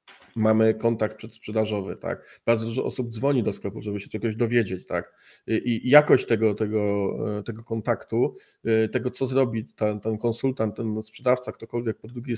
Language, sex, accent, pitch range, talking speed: Polish, male, native, 110-125 Hz, 155 wpm